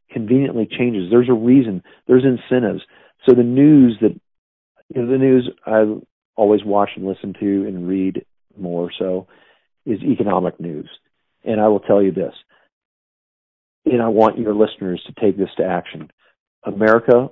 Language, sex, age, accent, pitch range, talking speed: English, male, 40-59, American, 95-120 Hz, 155 wpm